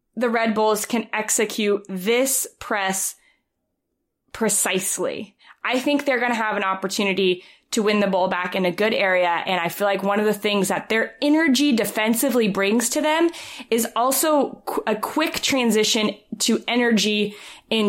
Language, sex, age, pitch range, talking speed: English, female, 20-39, 200-250 Hz, 160 wpm